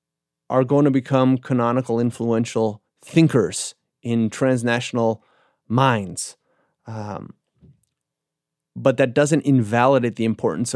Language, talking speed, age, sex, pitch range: English, 95 wpm, 30-49, male, 120-145 Hz